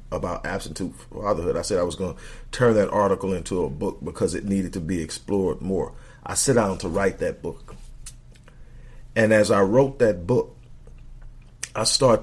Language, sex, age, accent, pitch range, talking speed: English, male, 40-59, American, 95-125 Hz, 180 wpm